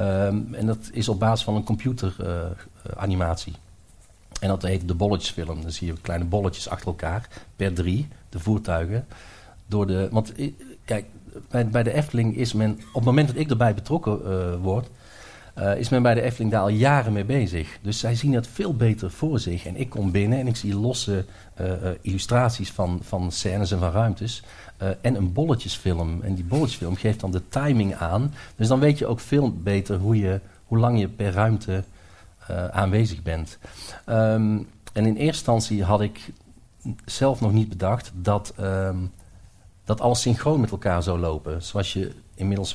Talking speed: 180 wpm